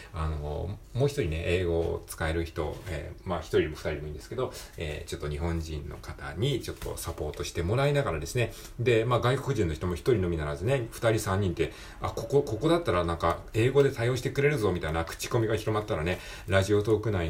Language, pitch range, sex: Japanese, 85-125 Hz, male